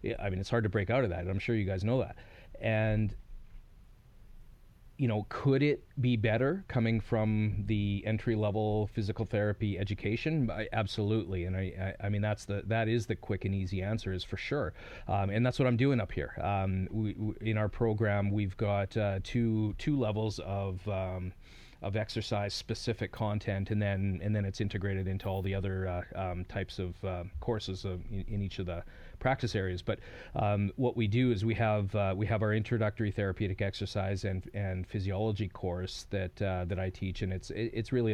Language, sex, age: English, male, 30-49